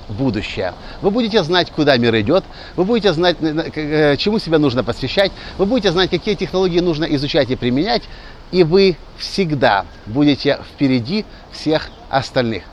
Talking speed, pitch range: 140 wpm, 120-170 Hz